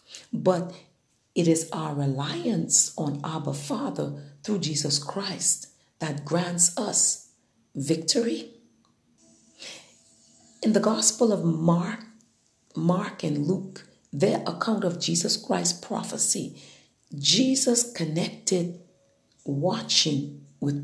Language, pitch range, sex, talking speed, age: English, 145-215 Hz, female, 95 wpm, 50-69